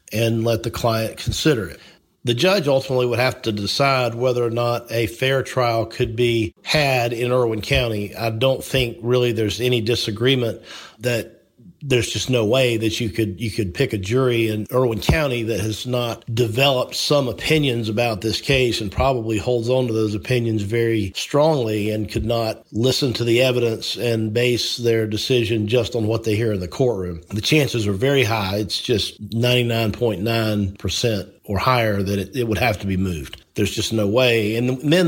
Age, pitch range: 50-69, 110-130 Hz